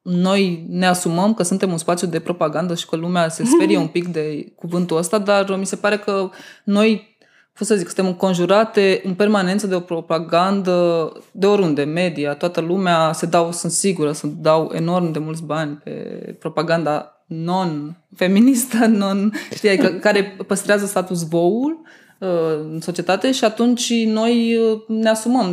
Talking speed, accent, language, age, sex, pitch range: 150 wpm, native, Romanian, 20-39, female, 175-225 Hz